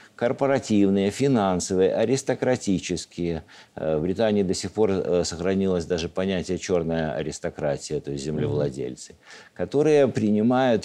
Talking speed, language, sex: 100 wpm, Russian, male